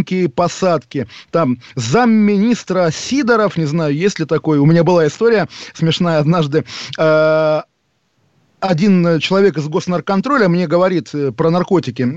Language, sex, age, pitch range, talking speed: Russian, male, 20-39, 155-200 Hz, 120 wpm